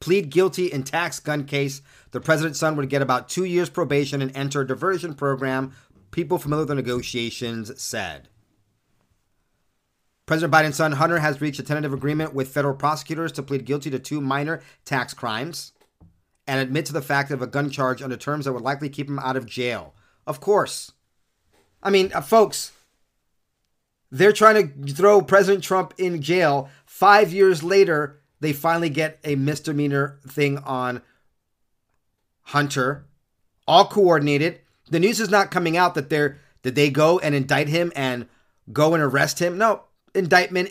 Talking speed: 165 wpm